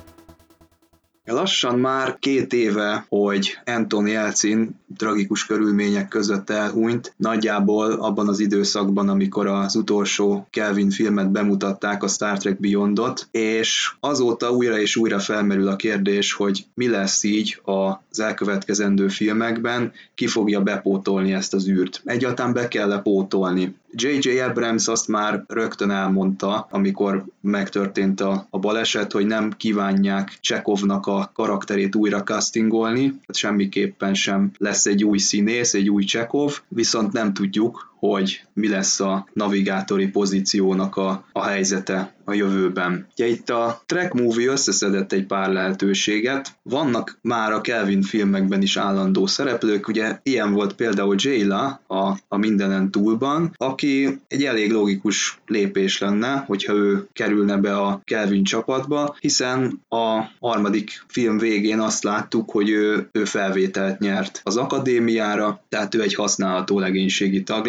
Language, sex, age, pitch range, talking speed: Hungarian, male, 20-39, 100-115 Hz, 135 wpm